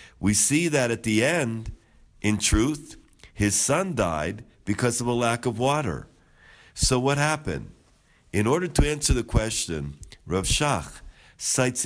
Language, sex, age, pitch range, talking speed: English, male, 50-69, 105-135 Hz, 145 wpm